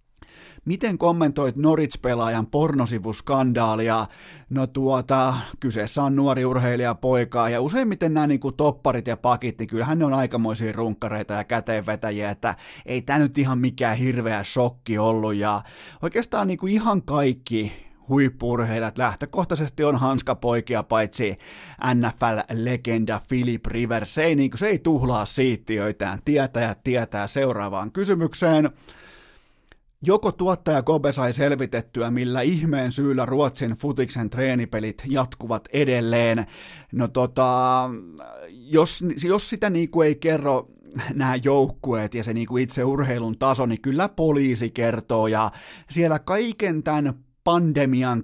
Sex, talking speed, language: male, 120 wpm, Finnish